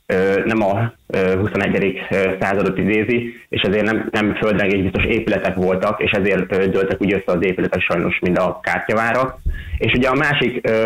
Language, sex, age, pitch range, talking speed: Hungarian, male, 30-49, 100-115 Hz, 155 wpm